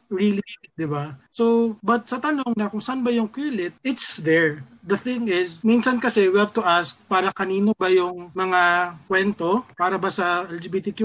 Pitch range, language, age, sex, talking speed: 175-210 Hz, Filipino, 20-39, male, 190 wpm